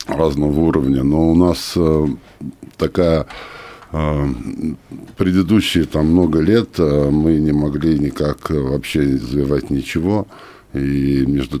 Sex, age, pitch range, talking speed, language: male, 50-69, 70-80 Hz, 115 wpm, Russian